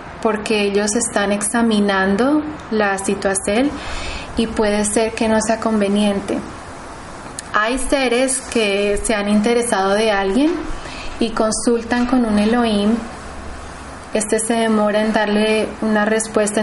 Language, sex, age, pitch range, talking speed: Spanish, female, 20-39, 205-245 Hz, 120 wpm